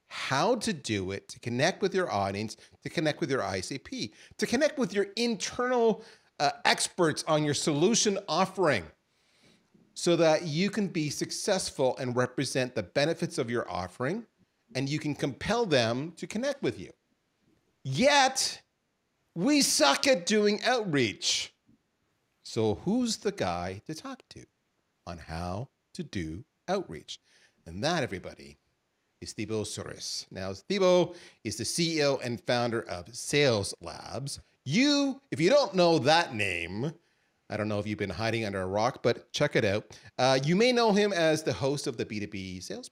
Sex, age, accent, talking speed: male, 40-59, American, 160 wpm